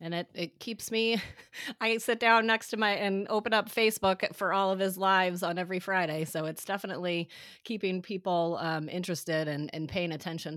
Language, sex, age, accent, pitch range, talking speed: English, female, 30-49, American, 165-210 Hz, 195 wpm